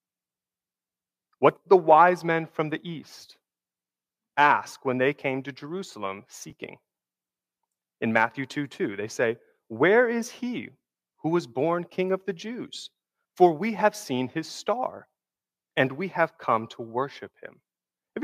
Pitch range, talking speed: 125-185 Hz, 150 wpm